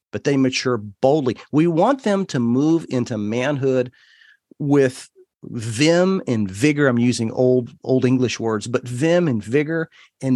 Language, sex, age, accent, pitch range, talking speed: English, male, 40-59, American, 125-170 Hz, 150 wpm